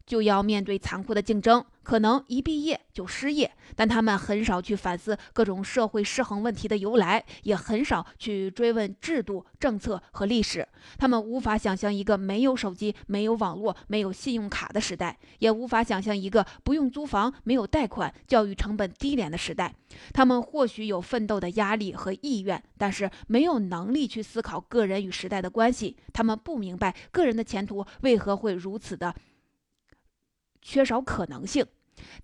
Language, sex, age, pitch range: Chinese, female, 20-39, 200-240 Hz